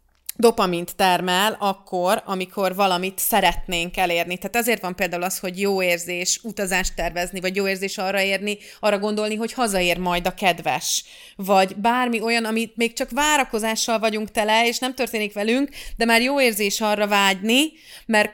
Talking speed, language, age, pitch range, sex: 160 wpm, Hungarian, 30-49, 180-230 Hz, female